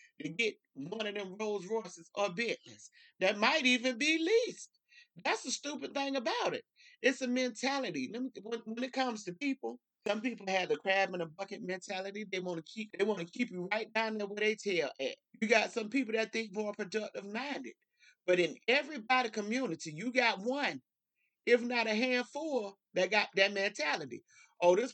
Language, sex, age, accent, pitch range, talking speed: English, male, 30-49, American, 220-320 Hz, 190 wpm